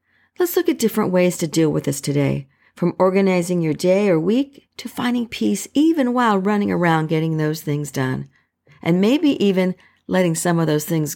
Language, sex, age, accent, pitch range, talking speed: English, female, 50-69, American, 160-220 Hz, 190 wpm